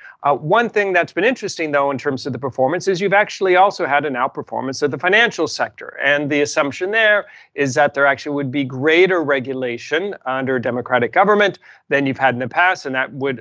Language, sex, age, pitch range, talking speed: English, male, 40-59, 130-165 Hz, 215 wpm